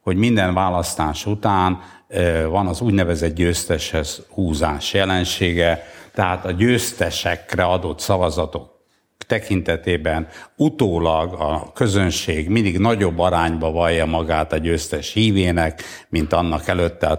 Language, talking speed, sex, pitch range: Hungarian, 105 wpm, male, 85-105 Hz